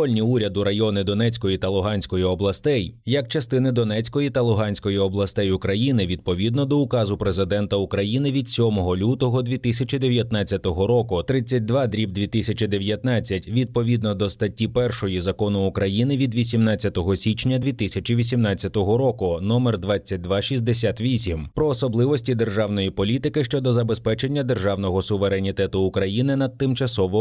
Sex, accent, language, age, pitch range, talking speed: male, native, Ukrainian, 20-39, 100-125 Hz, 105 wpm